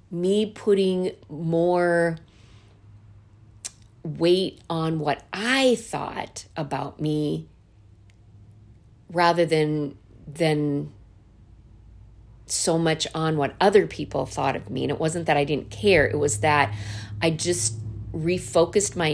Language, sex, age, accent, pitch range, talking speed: English, female, 40-59, American, 110-180 Hz, 115 wpm